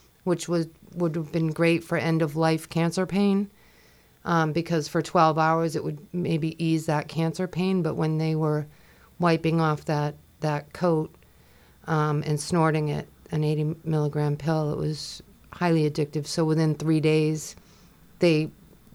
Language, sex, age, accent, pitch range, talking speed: English, female, 40-59, American, 155-170 Hz, 150 wpm